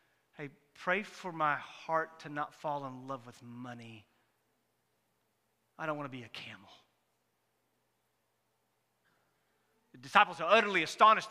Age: 40-59